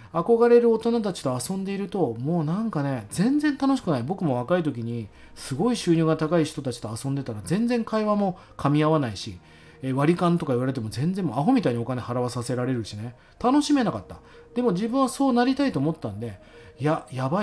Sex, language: male, Japanese